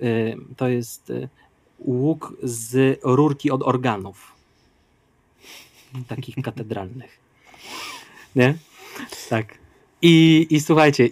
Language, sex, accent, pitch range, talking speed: Polish, male, native, 120-145 Hz, 75 wpm